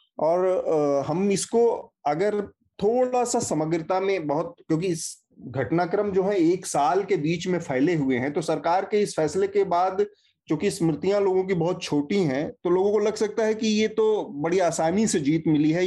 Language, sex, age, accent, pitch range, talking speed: Hindi, male, 30-49, native, 135-185 Hz, 190 wpm